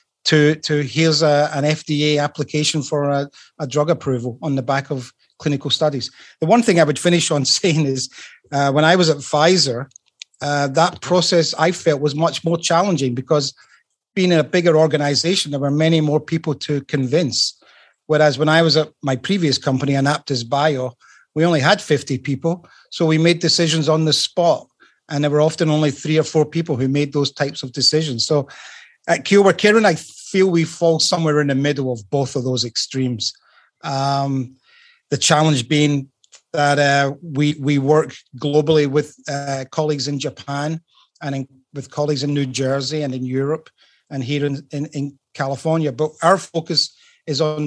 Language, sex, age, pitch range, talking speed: English, male, 30-49, 140-160 Hz, 180 wpm